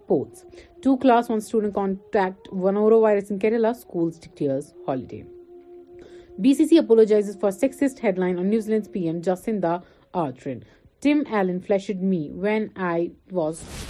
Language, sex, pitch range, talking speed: Urdu, female, 170-225 Hz, 140 wpm